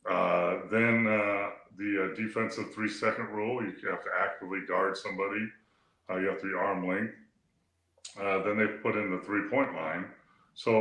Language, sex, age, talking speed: English, female, 30-49, 160 wpm